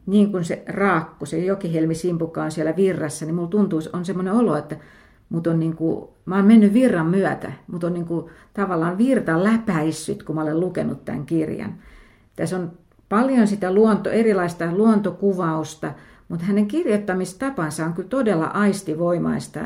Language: Finnish